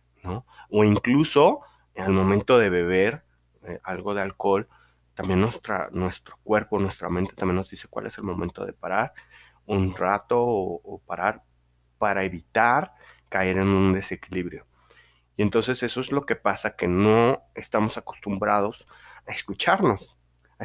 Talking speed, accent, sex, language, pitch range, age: 150 wpm, Mexican, male, Spanish, 85-105 Hz, 30-49